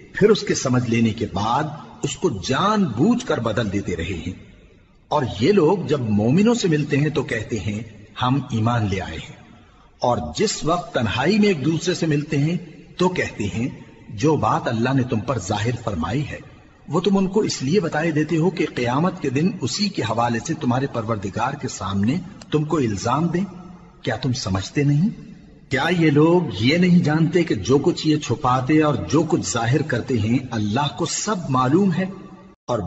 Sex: male